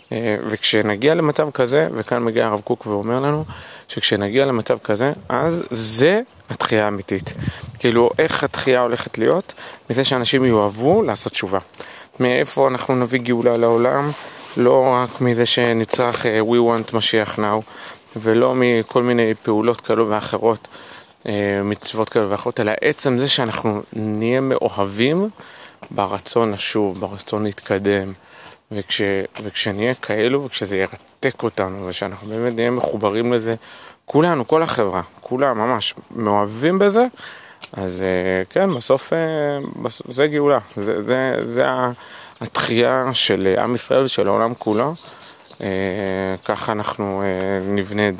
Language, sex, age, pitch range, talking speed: Hebrew, male, 30-49, 105-130 Hz, 115 wpm